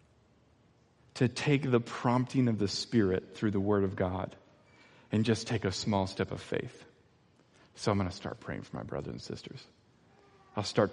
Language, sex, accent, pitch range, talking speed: English, male, American, 95-110 Hz, 180 wpm